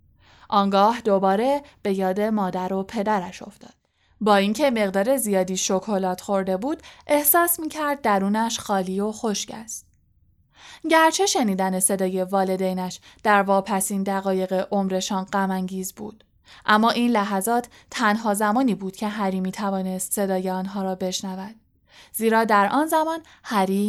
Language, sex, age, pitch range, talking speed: Persian, female, 10-29, 190-230 Hz, 130 wpm